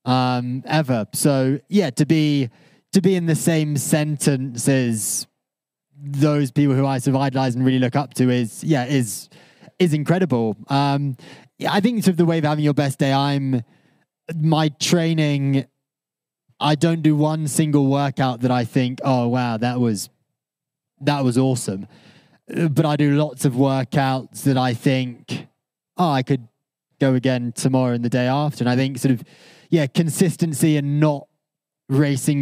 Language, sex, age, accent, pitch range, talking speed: English, male, 20-39, British, 130-155 Hz, 170 wpm